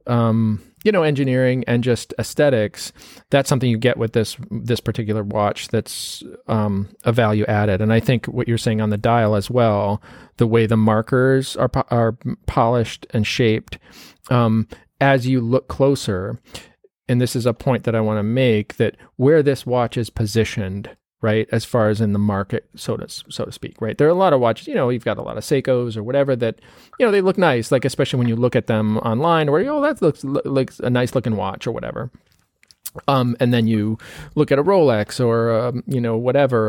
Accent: American